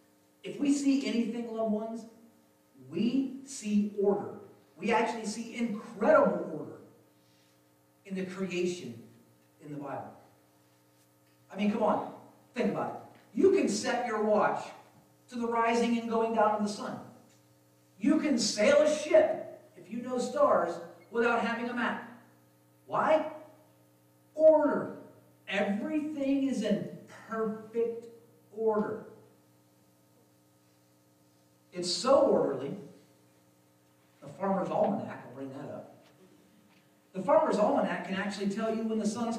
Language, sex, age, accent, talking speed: English, male, 50-69, American, 125 wpm